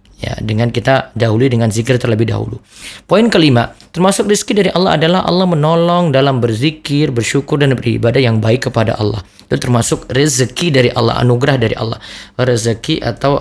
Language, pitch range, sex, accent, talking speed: Indonesian, 115-165 Hz, male, native, 160 wpm